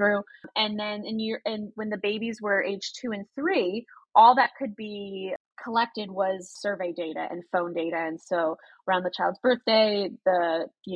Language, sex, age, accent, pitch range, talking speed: English, female, 20-39, American, 180-220 Hz, 180 wpm